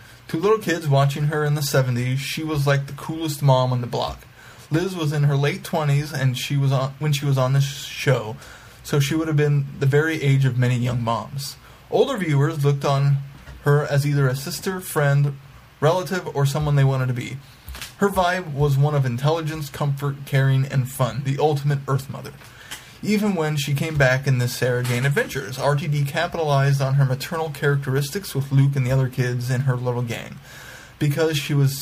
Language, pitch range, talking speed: English, 130-150 Hz, 200 wpm